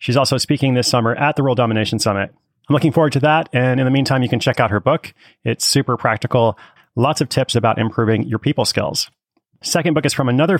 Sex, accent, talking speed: male, American, 230 wpm